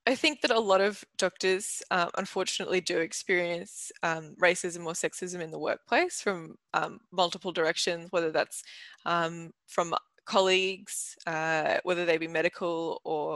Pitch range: 175-230 Hz